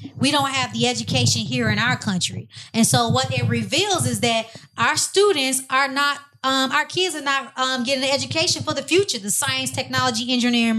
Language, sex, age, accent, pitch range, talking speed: English, female, 20-39, American, 200-275 Hz, 200 wpm